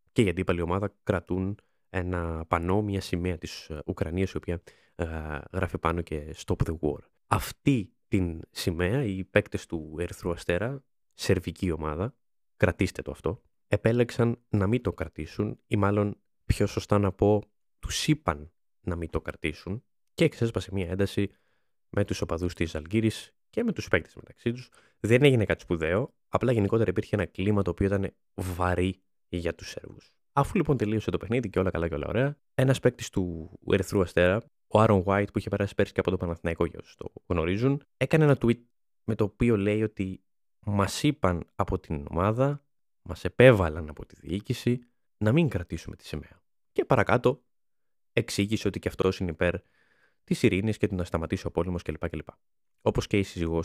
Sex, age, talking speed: male, 20-39, 175 wpm